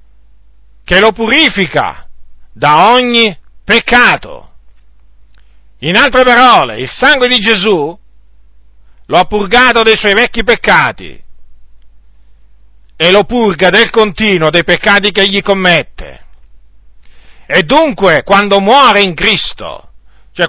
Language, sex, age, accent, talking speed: Italian, male, 50-69, native, 110 wpm